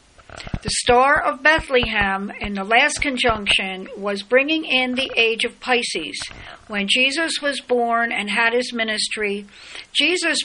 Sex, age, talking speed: female, 60-79, 140 wpm